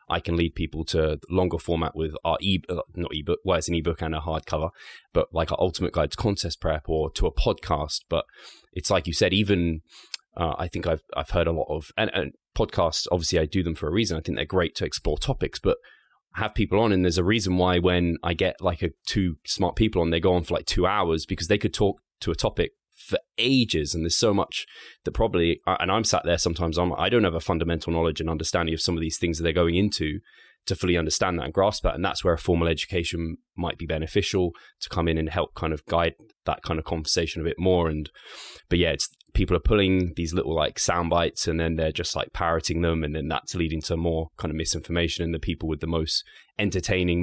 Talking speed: 250 wpm